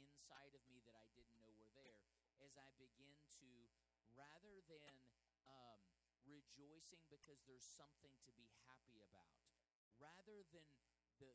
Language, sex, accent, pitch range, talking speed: English, male, American, 115-155 Hz, 135 wpm